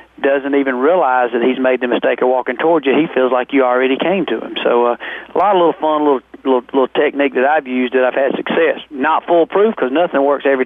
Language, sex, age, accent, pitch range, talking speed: English, male, 40-59, American, 130-155 Hz, 250 wpm